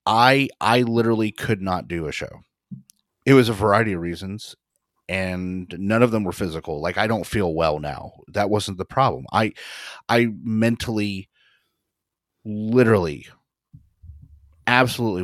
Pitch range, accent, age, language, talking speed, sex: 90-115 Hz, American, 30-49, English, 140 wpm, male